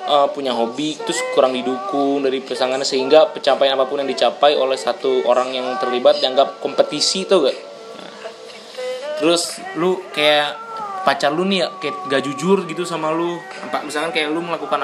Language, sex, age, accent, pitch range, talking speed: Indonesian, male, 20-39, native, 130-175 Hz, 155 wpm